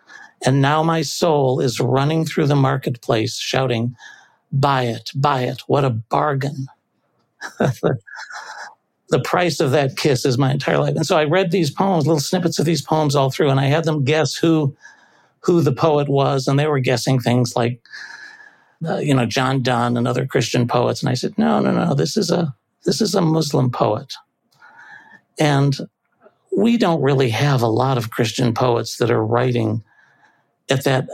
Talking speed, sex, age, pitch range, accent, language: 180 wpm, male, 60-79, 120-150 Hz, American, English